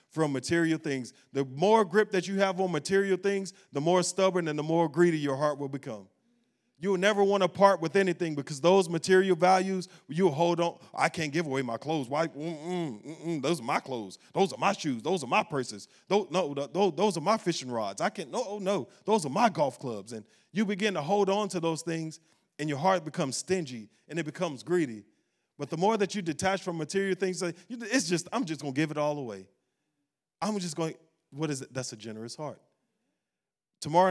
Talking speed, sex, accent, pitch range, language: 220 wpm, male, American, 140-185 Hz, English